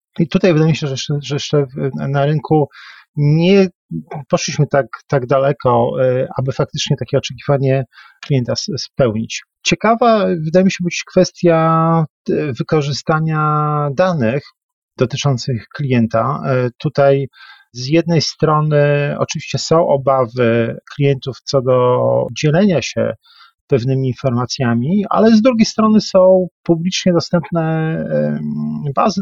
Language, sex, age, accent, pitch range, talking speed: Polish, male, 40-59, native, 130-170 Hz, 110 wpm